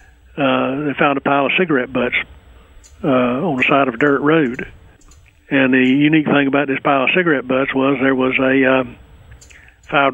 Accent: American